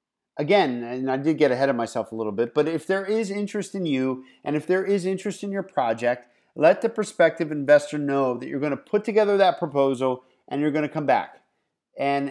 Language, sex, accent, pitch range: English, male, American, 140-175 Hz